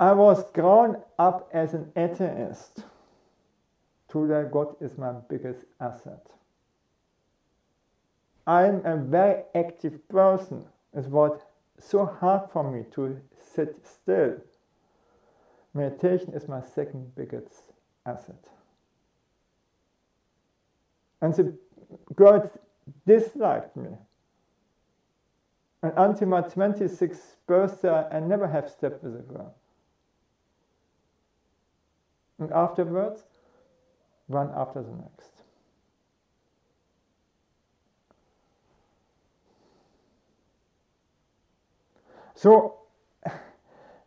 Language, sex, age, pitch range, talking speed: English, male, 50-69, 145-190 Hz, 80 wpm